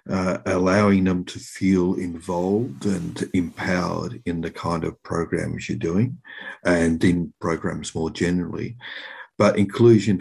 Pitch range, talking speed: 85-100 Hz, 130 wpm